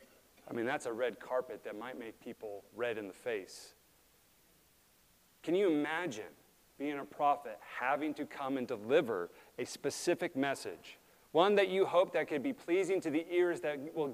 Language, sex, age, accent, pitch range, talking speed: English, male, 40-59, American, 150-220 Hz, 175 wpm